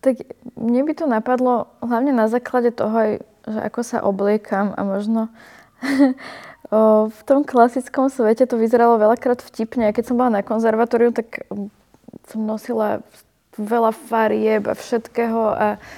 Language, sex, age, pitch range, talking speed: Slovak, female, 20-39, 185-230 Hz, 145 wpm